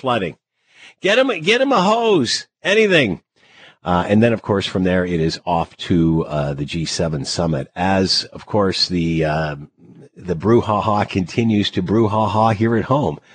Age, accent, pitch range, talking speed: 50-69, American, 85-105 Hz, 160 wpm